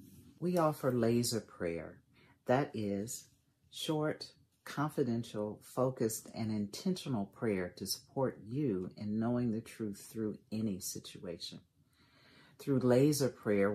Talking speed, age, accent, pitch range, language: 110 wpm, 50-69, American, 105-130 Hz, English